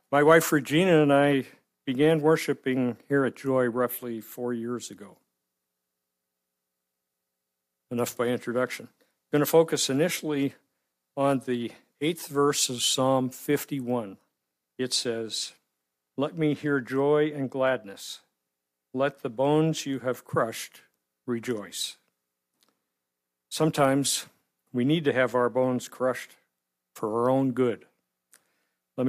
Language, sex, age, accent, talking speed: English, male, 50-69, American, 120 wpm